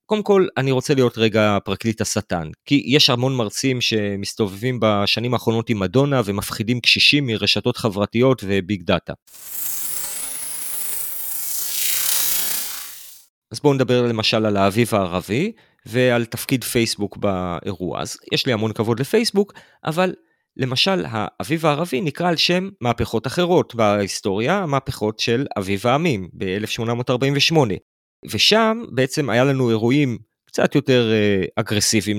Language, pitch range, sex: Hebrew, 105-135 Hz, male